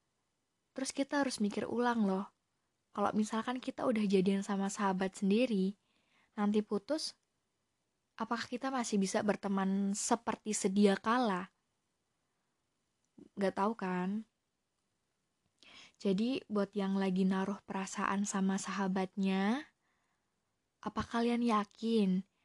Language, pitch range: Indonesian, 195-215 Hz